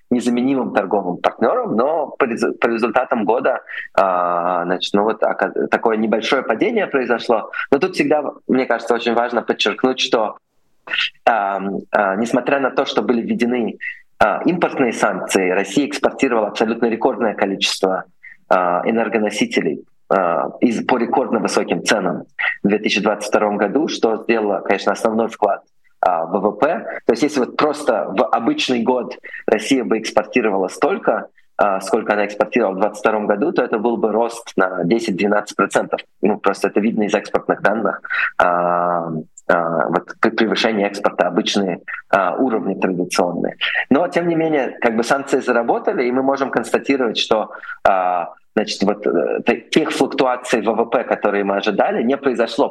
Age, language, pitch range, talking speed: 20-39, Russian, 105-125 Hz, 125 wpm